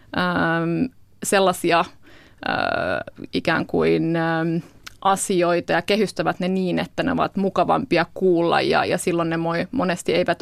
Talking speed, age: 115 wpm, 20-39